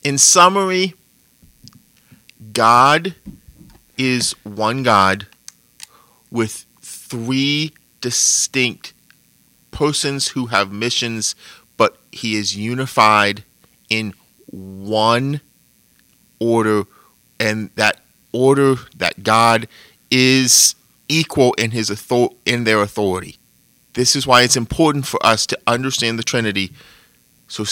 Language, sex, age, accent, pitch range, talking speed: English, male, 30-49, American, 105-135 Hz, 95 wpm